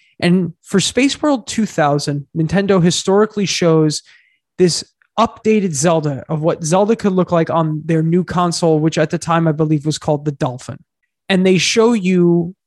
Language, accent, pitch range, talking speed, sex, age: English, American, 160-200 Hz, 165 wpm, male, 20-39